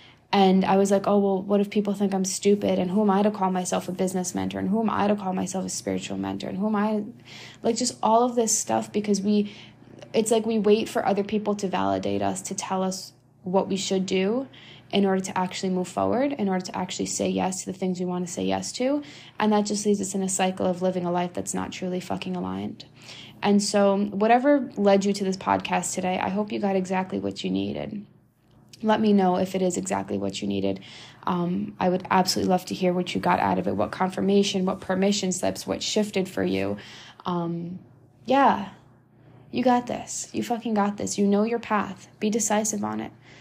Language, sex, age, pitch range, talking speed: English, female, 20-39, 170-210 Hz, 230 wpm